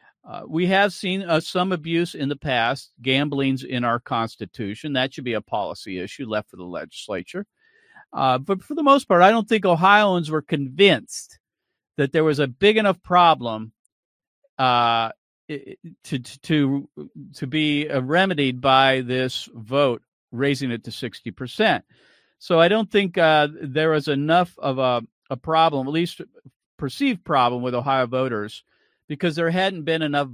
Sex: male